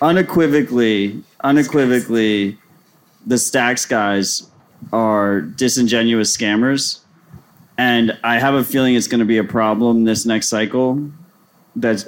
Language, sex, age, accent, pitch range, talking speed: English, male, 30-49, American, 115-130 Hz, 115 wpm